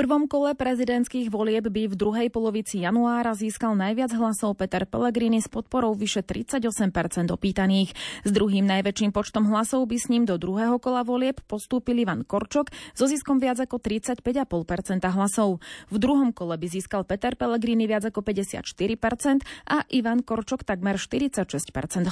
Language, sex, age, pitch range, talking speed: Slovak, female, 20-39, 200-240 Hz, 150 wpm